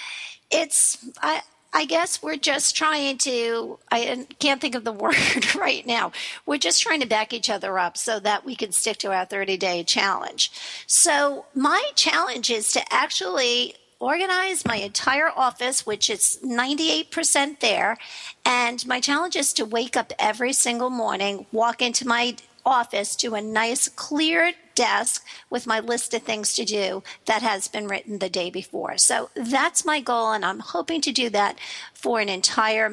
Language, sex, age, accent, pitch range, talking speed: English, female, 50-69, American, 220-305 Hz, 170 wpm